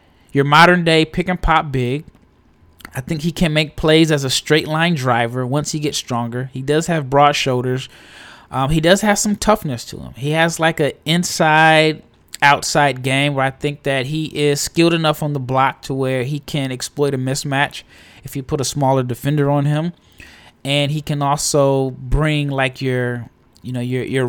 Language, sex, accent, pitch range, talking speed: English, male, American, 125-155 Hz, 195 wpm